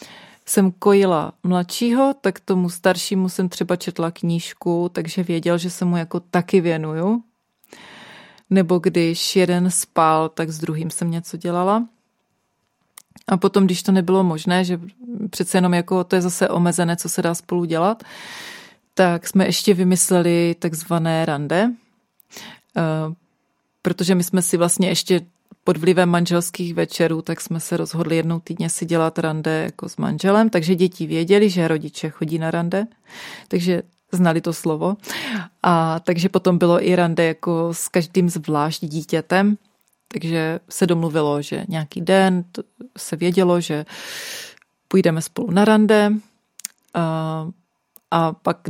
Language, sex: Czech, female